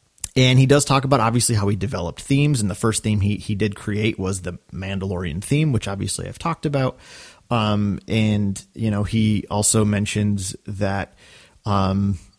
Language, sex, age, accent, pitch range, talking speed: English, male, 30-49, American, 100-120 Hz, 175 wpm